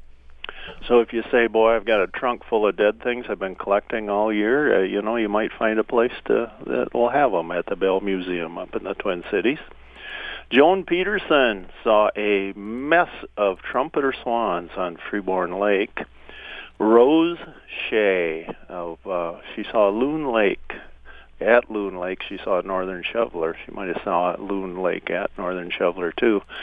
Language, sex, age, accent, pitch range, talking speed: English, male, 50-69, American, 95-110 Hz, 165 wpm